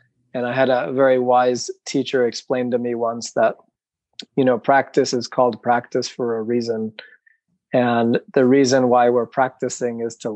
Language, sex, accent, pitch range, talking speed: English, male, American, 120-145 Hz, 170 wpm